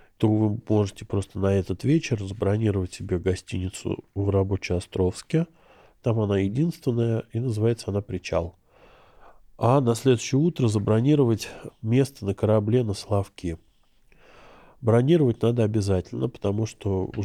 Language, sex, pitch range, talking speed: Russian, male, 100-120 Hz, 125 wpm